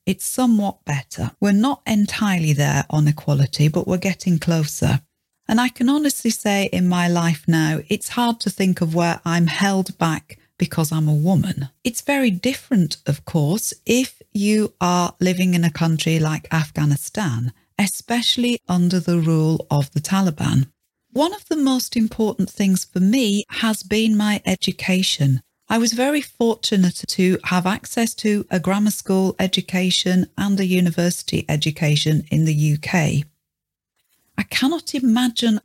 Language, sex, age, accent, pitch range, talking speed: English, female, 40-59, British, 165-220 Hz, 150 wpm